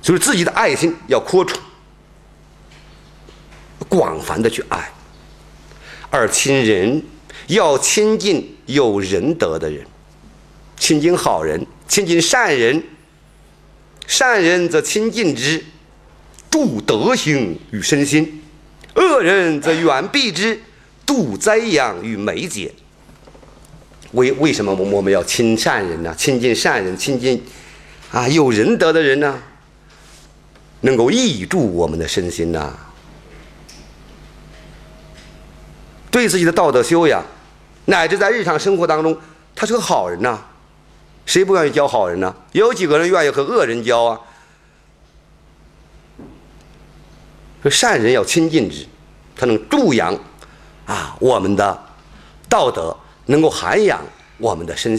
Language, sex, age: Chinese, male, 50-69